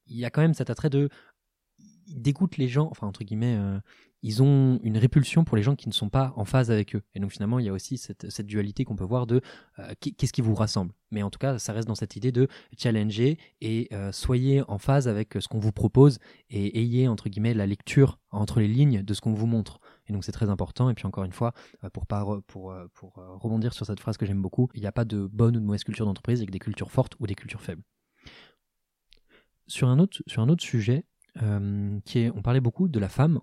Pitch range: 105-135 Hz